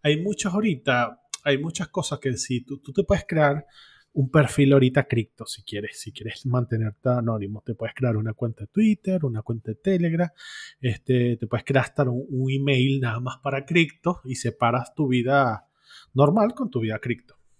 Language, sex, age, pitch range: Spanish, male, 30-49, 125-150 Hz